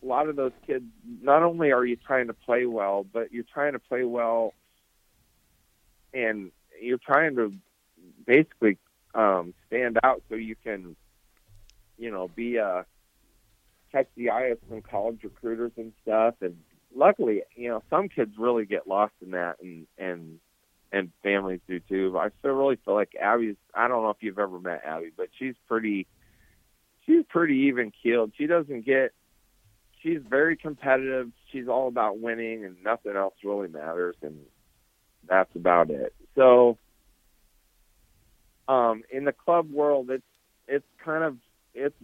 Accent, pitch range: American, 95-125 Hz